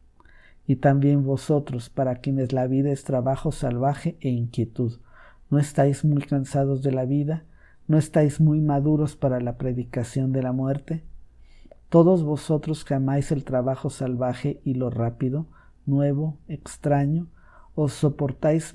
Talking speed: 140 wpm